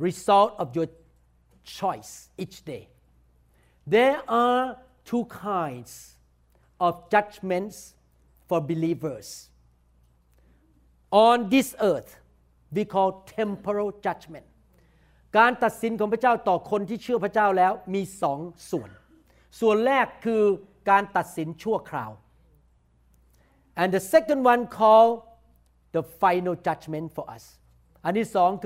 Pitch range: 165-225 Hz